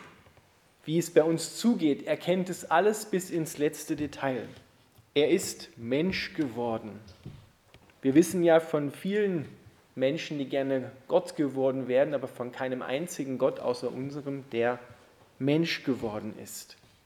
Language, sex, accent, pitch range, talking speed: German, male, German, 145-180 Hz, 135 wpm